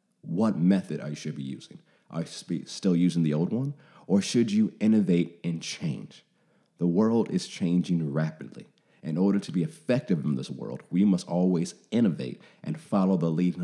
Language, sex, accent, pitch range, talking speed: English, male, American, 80-95 Hz, 180 wpm